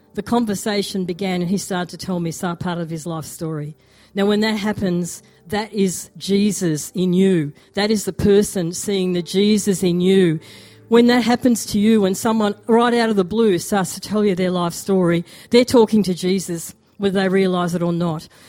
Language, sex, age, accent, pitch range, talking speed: English, female, 40-59, Australian, 180-220 Hz, 200 wpm